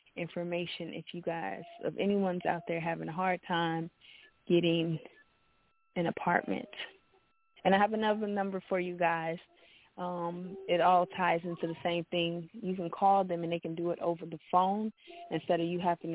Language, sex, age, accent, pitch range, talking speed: English, female, 20-39, American, 175-205 Hz, 175 wpm